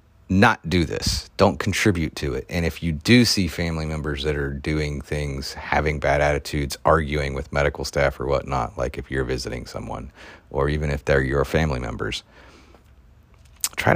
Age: 30-49